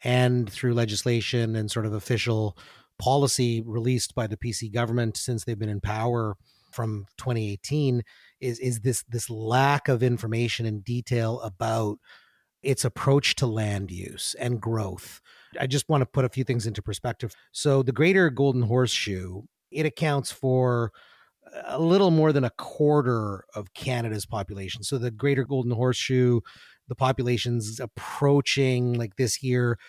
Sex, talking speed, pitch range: male, 155 wpm, 110-130 Hz